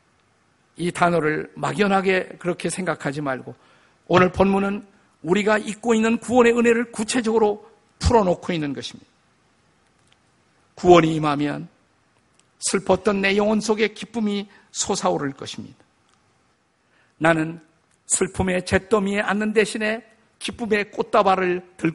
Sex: male